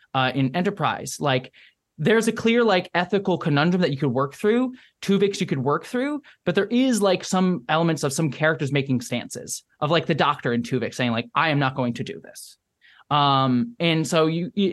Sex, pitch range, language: male, 140-205 Hz, English